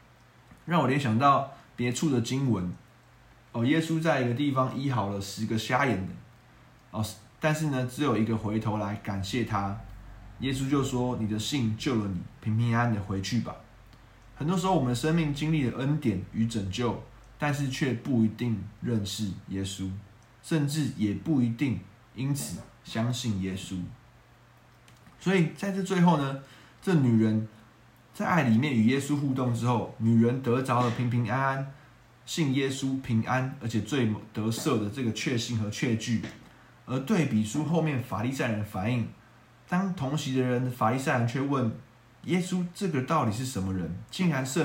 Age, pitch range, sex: 20-39, 110-135 Hz, male